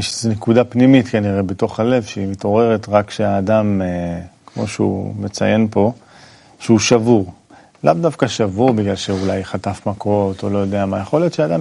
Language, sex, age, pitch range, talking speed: Hebrew, male, 40-59, 100-125 Hz, 155 wpm